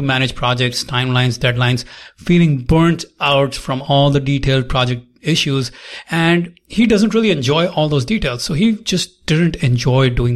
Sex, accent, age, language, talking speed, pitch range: male, Indian, 30-49, English, 155 wpm, 135-175 Hz